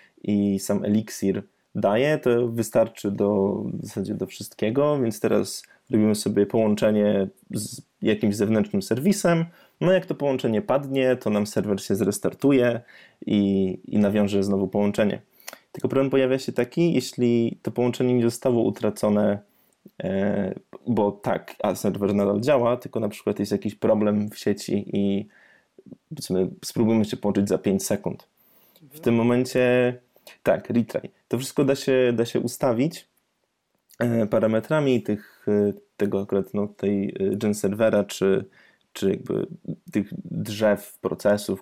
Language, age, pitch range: Polish, 20-39, 105-130 Hz